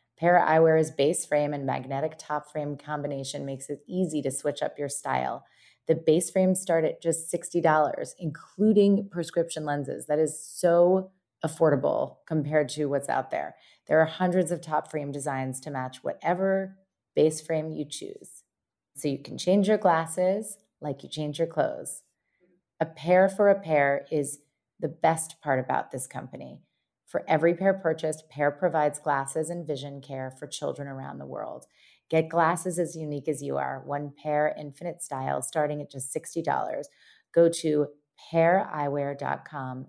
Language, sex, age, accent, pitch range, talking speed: English, female, 30-49, American, 140-175 Hz, 160 wpm